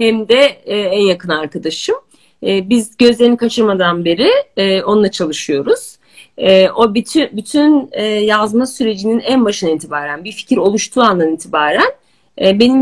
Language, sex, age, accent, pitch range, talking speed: Turkish, female, 50-69, native, 195-270 Hz, 110 wpm